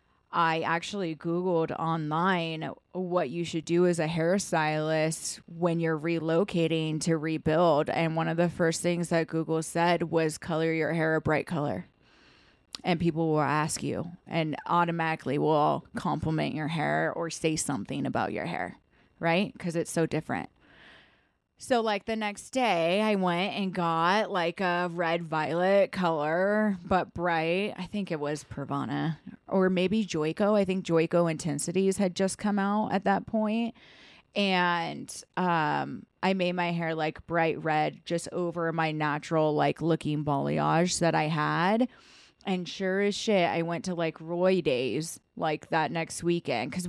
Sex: female